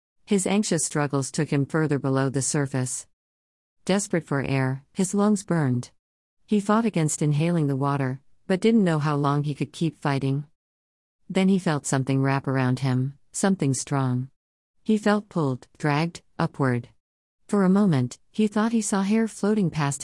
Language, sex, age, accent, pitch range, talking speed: English, female, 50-69, American, 130-180 Hz, 160 wpm